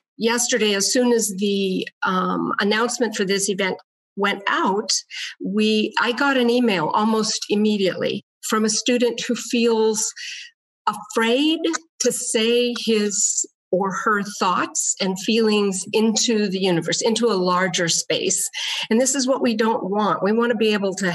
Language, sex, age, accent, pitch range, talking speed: English, female, 50-69, American, 200-260 Hz, 150 wpm